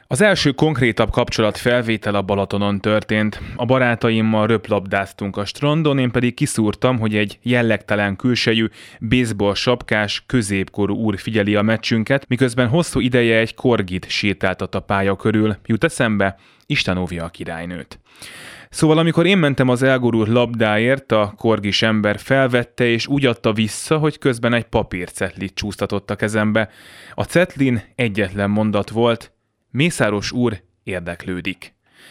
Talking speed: 135 wpm